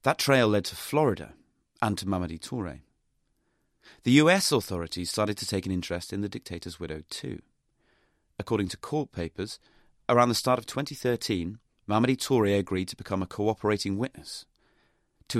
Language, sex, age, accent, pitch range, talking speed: English, male, 30-49, British, 90-120 Hz, 155 wpm